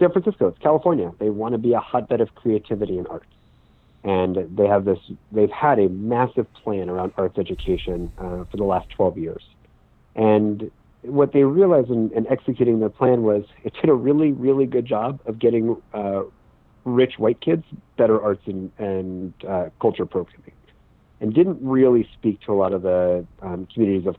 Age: 40-59